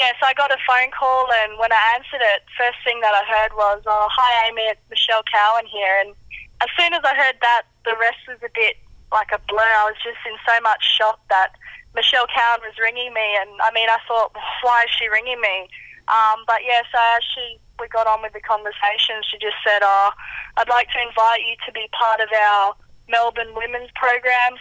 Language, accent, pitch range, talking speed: English, Australian, 205-235 Hz, 220 wpm